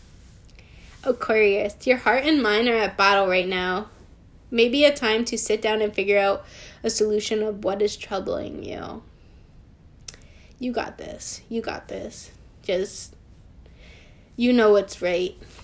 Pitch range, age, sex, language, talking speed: 200-230 Hz, 10-29, female, English, 140 wpm